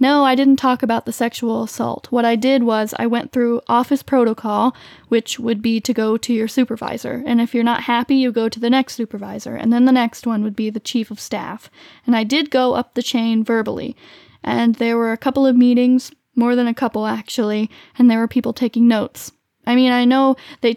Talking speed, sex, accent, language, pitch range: 225 wpm, female, American, English, 225-250 Hz